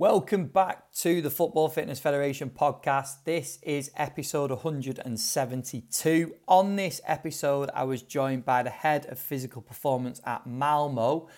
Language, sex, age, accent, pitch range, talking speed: English, male, 30-49, British, 130-150 Hz, 135 wpm